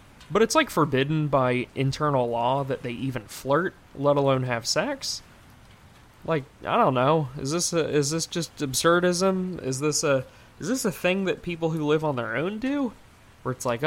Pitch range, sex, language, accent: 120-155 Hz, male, English, American